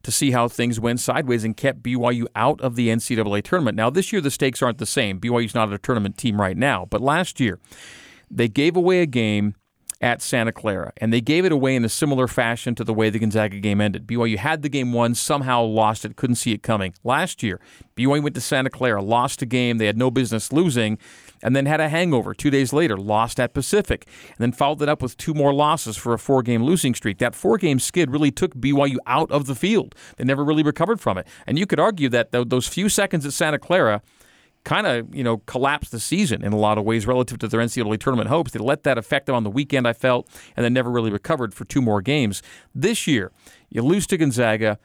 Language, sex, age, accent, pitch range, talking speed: English, male, 40-59, American, 115-140 Hz, 240 wpm